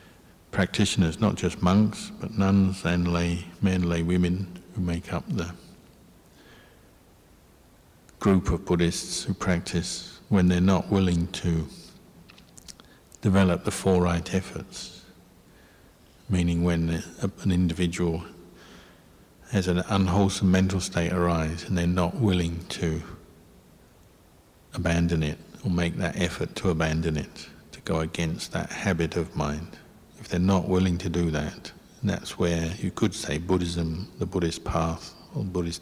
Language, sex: English, male